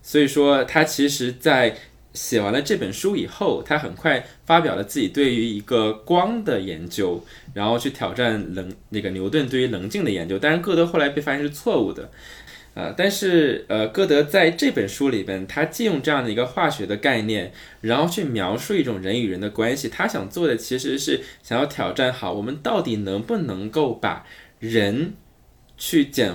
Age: 20-39